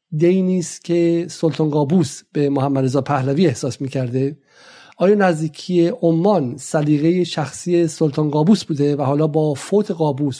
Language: Persian